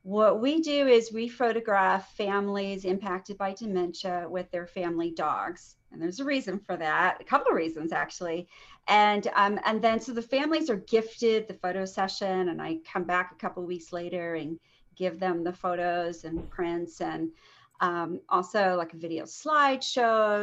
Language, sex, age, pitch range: English, female, 40-59, 170-210 Hz